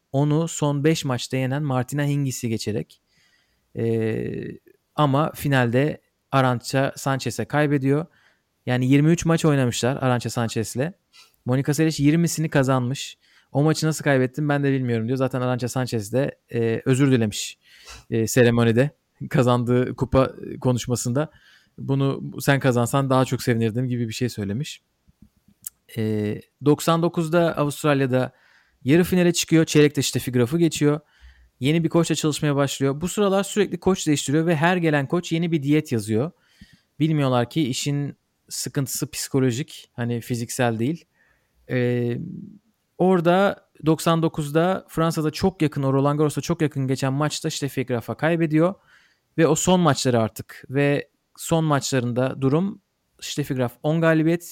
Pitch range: 125-160 Hz